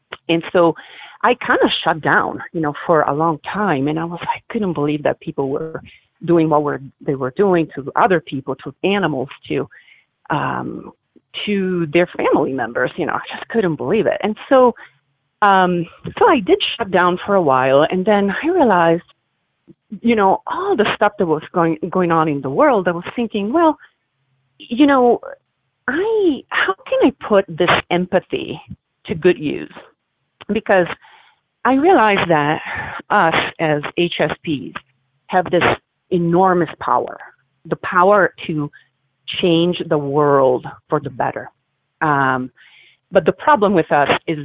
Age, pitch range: 40-59, 150-205 Hz